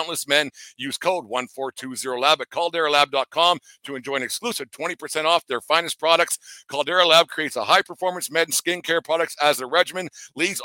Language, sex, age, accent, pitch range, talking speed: English, male, 60-79, American, 140-175 Hz, 175 wpm